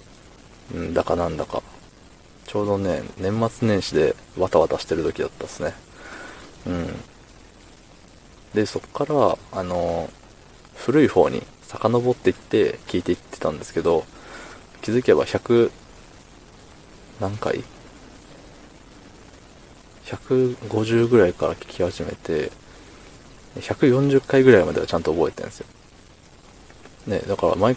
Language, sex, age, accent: Japanese, male, 20-39, native